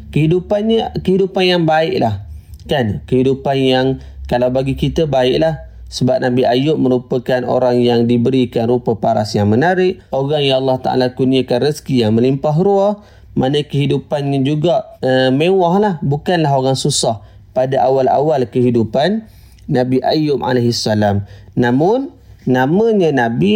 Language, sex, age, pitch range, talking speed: Malay, male, 30-49, 125-160 Hz, 120 wpm